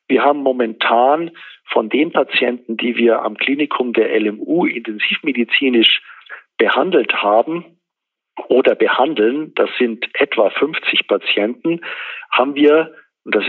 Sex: male